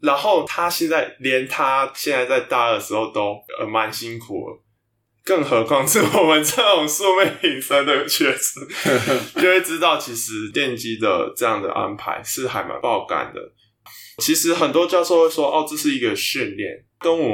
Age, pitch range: 20-39, 115-170 Hz